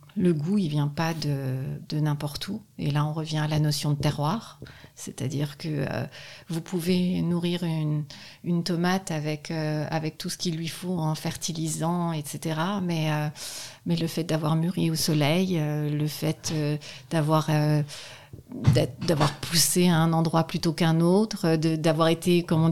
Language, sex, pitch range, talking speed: French, female, 150-185 Hz, 175 wpm